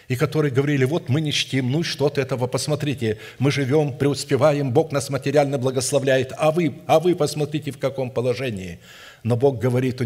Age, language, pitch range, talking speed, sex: 60-79, Russian, 115-135 Hz, 180 wpm, male